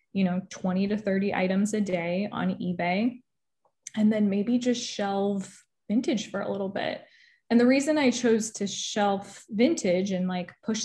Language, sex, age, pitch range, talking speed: English, female, 20-39, 185-225 Hz, 170 wpm